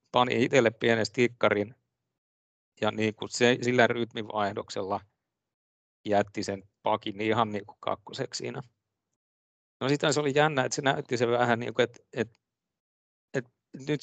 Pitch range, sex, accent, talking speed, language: 105-125 Hz, male, native, 140 wpm, Finnish